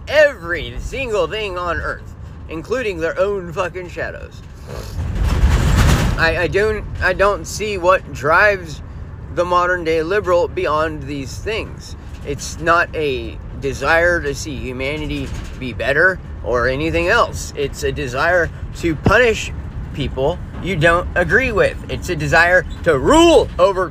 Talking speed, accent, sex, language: 130 wpm, American, male, English